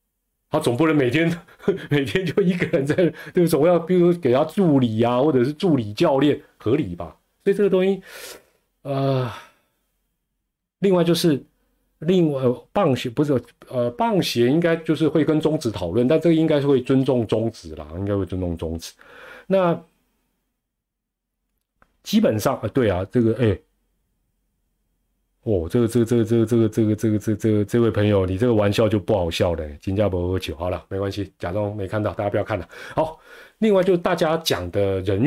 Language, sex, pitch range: Chinese, male, 100-155 Hz